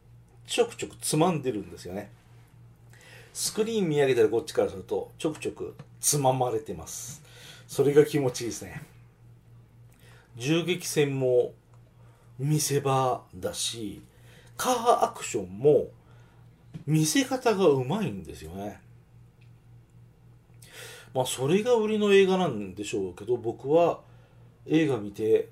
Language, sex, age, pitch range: Japanese, male, 40-59, 120-170 Hz